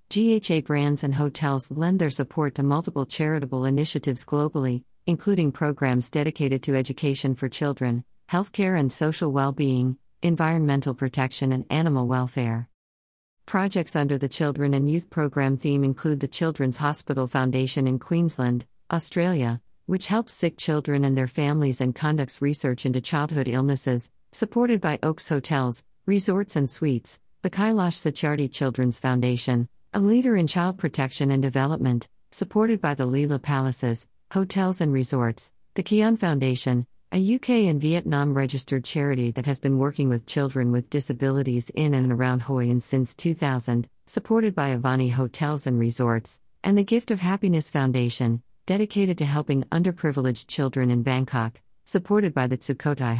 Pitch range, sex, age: 130-165 Hz, female, 50-69